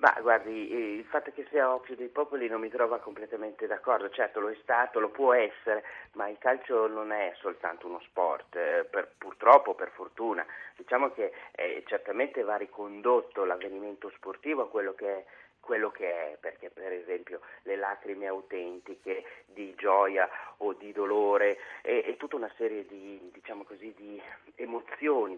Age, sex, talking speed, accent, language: 40-59, male, 165 wpm, native, Italian